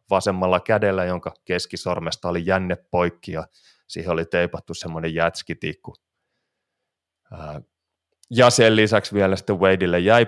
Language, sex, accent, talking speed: Finnish, male, native, 115 wpm